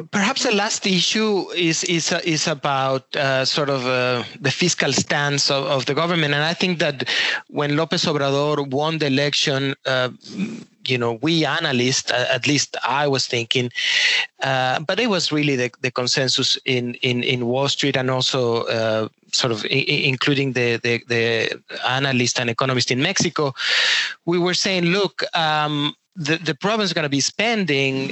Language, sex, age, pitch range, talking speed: French, male, 30-49, 135-180 Hz, 170 wpm